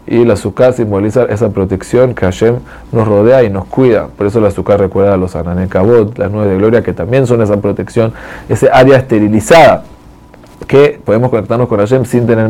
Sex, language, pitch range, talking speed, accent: male, Spanish, 105-130 Hz, 190 wpm, Argentinian